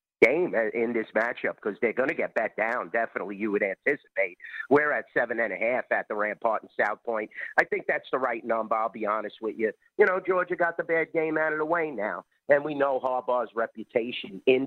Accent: American